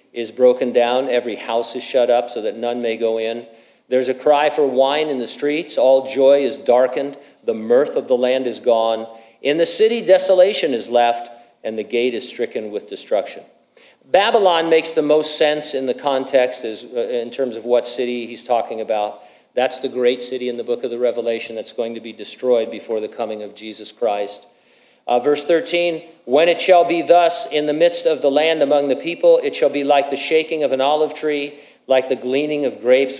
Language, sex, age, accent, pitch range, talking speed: English, male, 50-69, American, 120-150 Hz, 210 wpm